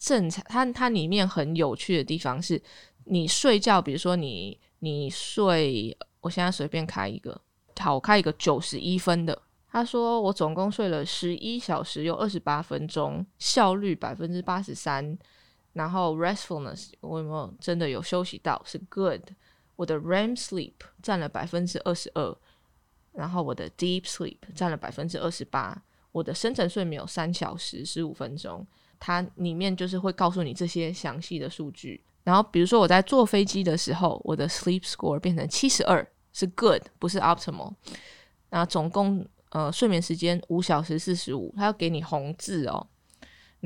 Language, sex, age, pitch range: Chinese, female, 20-39, 160-195 Hz